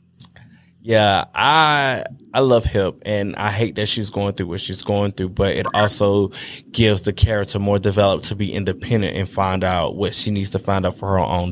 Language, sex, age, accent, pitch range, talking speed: English, male, 20-39, American, 100-125 Hz, 205 wpm